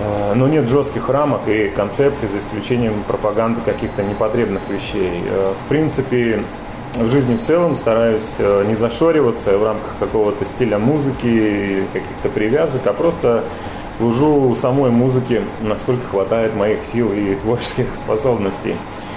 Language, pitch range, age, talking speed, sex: Russian, 105-130 Hz, 30-49, 125 wpm, male